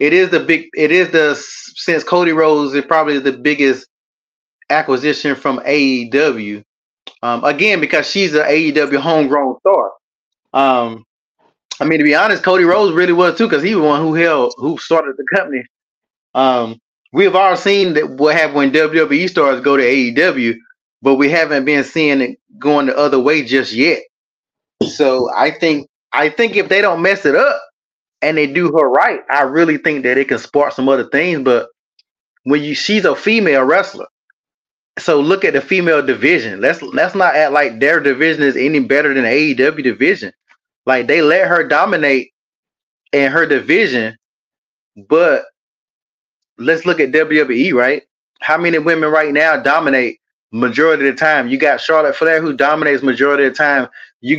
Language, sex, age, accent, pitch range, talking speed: English, male, 20-39, American, 135-165 Hz, 175 wpm